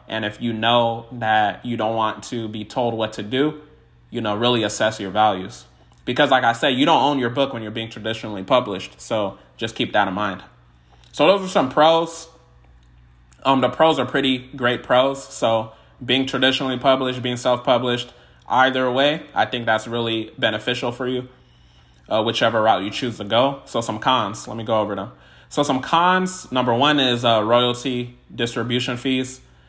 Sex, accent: male, American